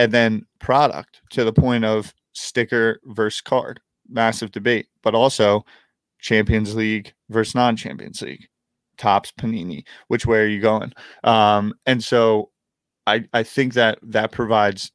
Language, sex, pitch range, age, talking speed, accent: English, male, 100-115 Hz, 20-39, 140 wpm, American